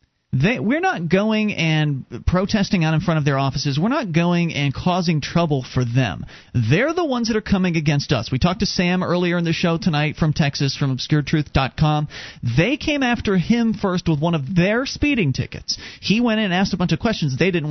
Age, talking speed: 40-59, 210 wpm